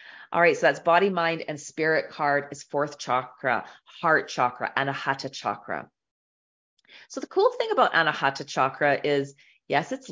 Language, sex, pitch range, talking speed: English, female, 130-150 Hz, 155 wpm